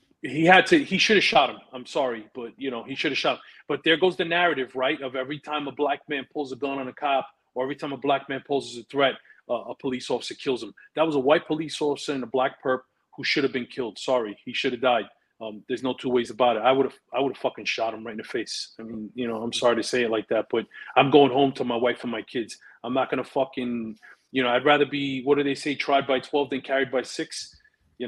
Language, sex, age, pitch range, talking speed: English, male, 30-49, 130-165 Hz, 285 wpm